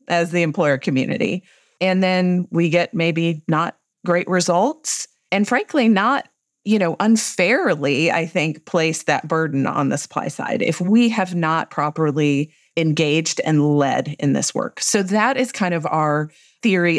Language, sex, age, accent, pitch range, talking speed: English, female, 40-59, American, 145-175 Hz, 160 wpm